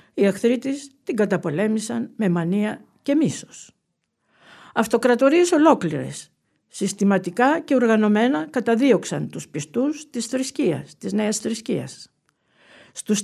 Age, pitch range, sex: 50-69, 195-275 Hz, female